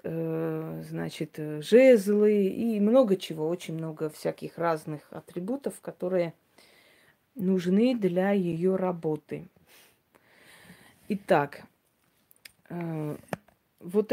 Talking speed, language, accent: 75 wpm, Russian, native